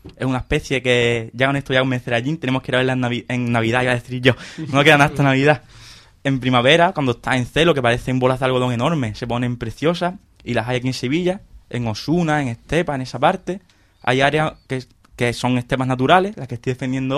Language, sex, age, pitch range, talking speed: Spanish, male, 20-39, 120-140 Hz, 230 wpm